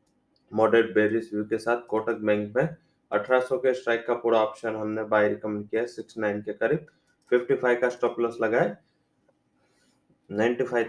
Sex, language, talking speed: male, English, 150 wpm